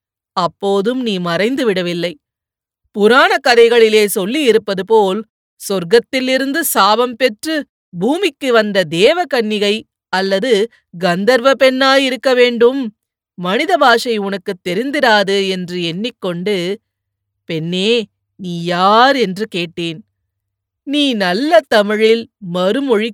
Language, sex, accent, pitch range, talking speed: Tamil, female, native, 180-240 Hz, 90 wpm